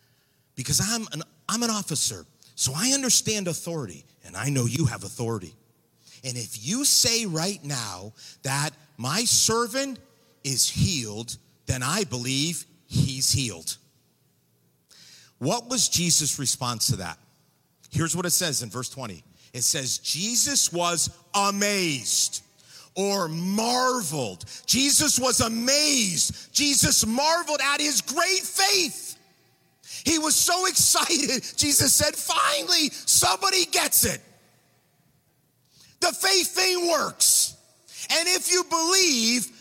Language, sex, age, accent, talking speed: English, male, 50-69, American, 120 wpm